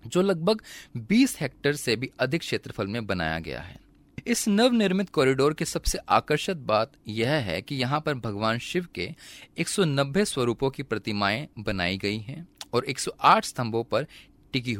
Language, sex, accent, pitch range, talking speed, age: Hindi, male, native, 115-160 Hz, 160 wpm, 30-49